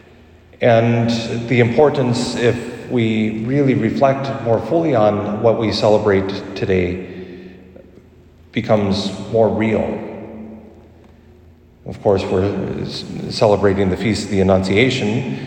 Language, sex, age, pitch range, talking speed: English, male, 40-59, 100-115 Hz, 100 wpm